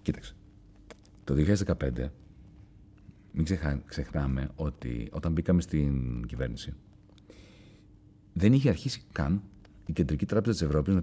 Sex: male